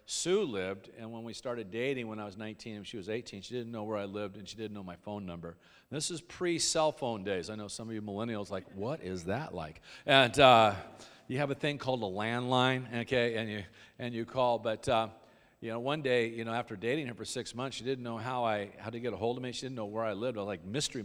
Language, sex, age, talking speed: English, male, 50-69, 275 wpm